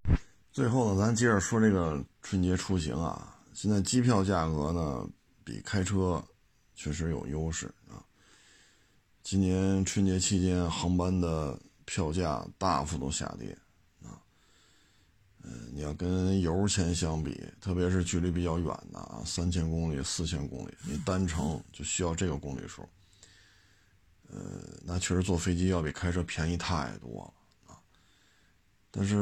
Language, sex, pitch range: Chinese, male, 85-100 Hz